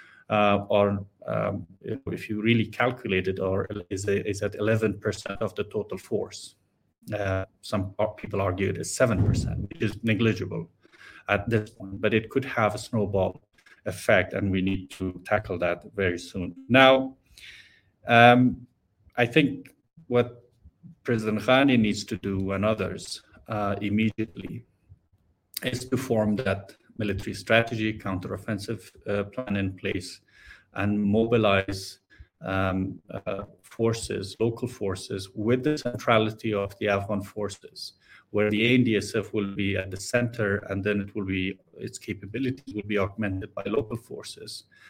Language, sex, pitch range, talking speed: Turkish, male, 95-115 Hz, 140 wpm